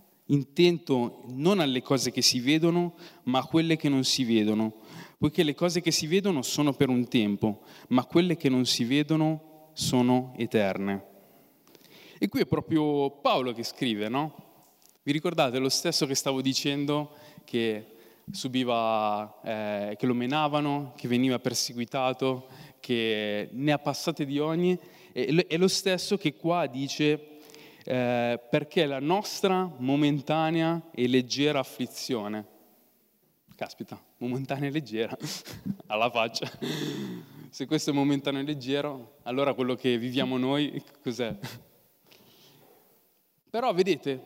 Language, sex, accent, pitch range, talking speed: Italian, male, native, 125-155 Hz, 130 wpm